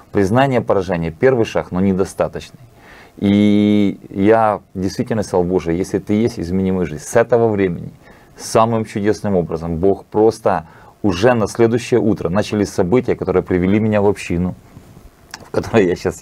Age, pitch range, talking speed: 30-49, 90-110 Hz, 145 wpm